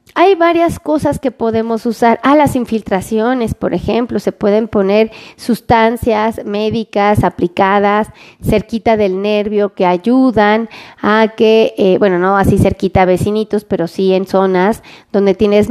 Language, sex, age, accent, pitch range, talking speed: Spanish, female, 30-49, Mexican, 195-255 Hz, 140 wpm